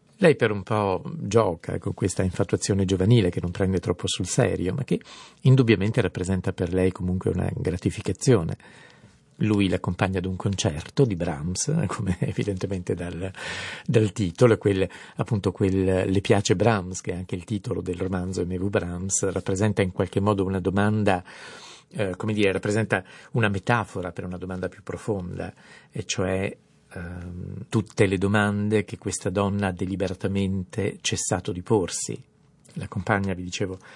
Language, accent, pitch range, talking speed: Italian, native, 95-105 Hz, 150 wpm